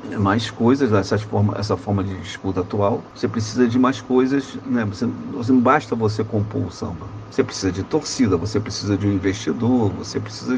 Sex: male